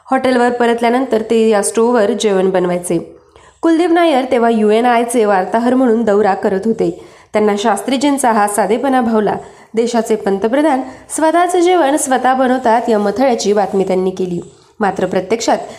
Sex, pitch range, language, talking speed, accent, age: female, 205-260 Hz, Marathi, 120 wpm, native, 20-39